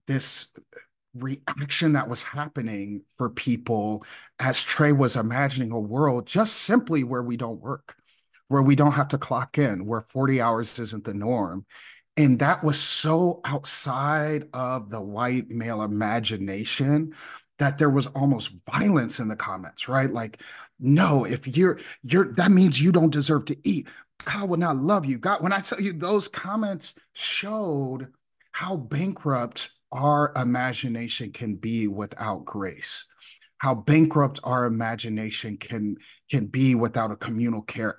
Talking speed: 150 wpm